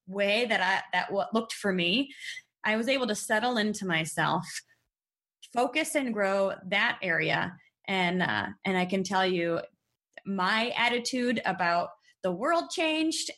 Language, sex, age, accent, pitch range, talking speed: English, female, 20-39, American, 200-285 Hz, 150 wpm